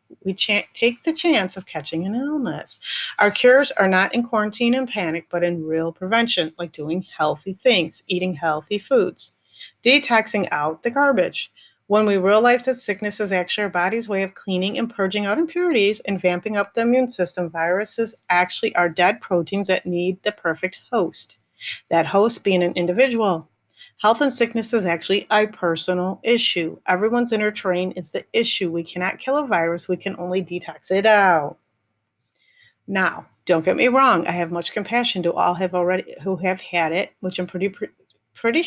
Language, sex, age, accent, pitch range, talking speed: English, female, 40-59, American, 175-220 Hz, 175 wpm